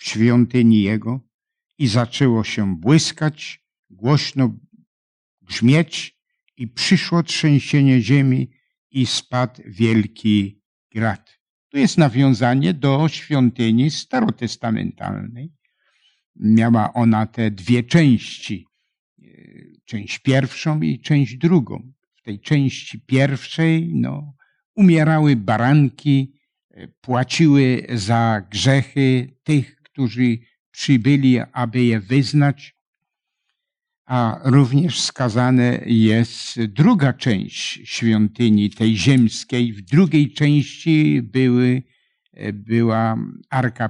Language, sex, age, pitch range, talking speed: Polish, male, 60-79, 115-145 Hz, 85 wpm